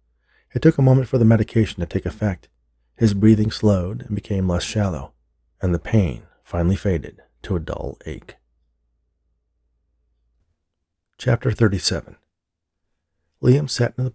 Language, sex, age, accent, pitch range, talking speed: English, male, 40-59, American, 80-105 Hz, 135 wpm